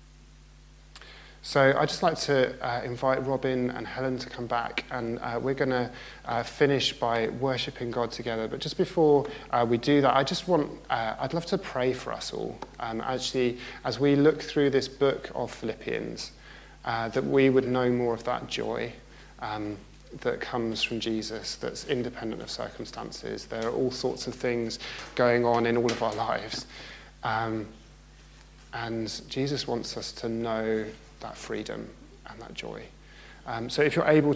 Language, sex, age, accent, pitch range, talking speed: English, male, 20-39, British, 115-135 Hz, 170 wpm